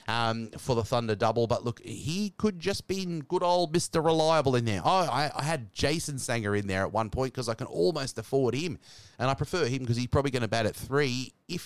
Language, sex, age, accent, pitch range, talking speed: English, male, 30-49, Australian, 115-165 Hz, 240 wpm